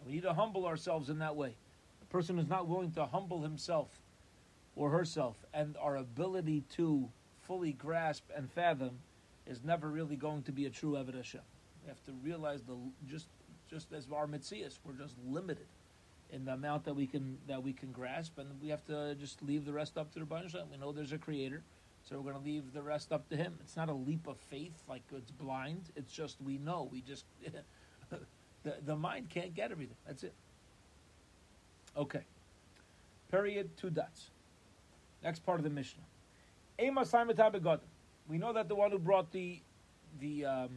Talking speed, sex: 185 wpm, male